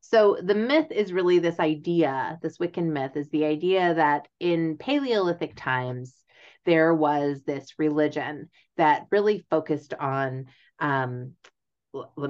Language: English